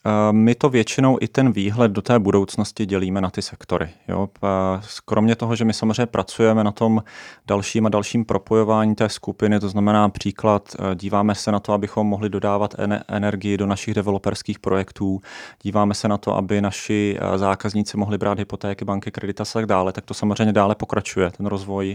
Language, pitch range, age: Czech, 100-110 Hz, 30-49